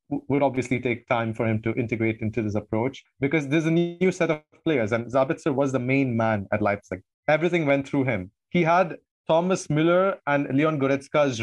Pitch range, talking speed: 125-160 Hz, 195 wpm